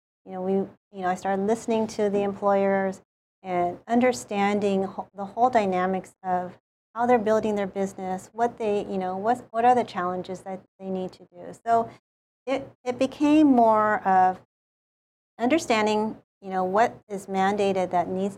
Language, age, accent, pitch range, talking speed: English, 40-59, American, 185-220 Hz, 165 wpm